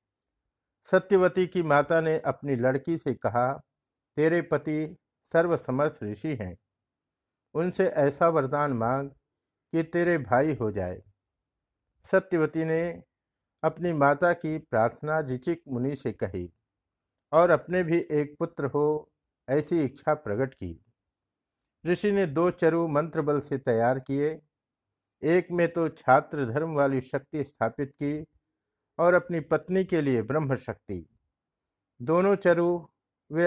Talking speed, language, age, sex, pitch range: 125 wpm, Hindi, 60-79, male, 125-165 Hz